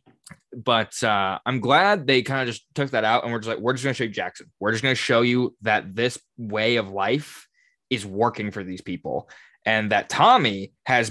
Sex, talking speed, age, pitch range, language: male, 225 wpm, 20-39, 115-150 Hz, English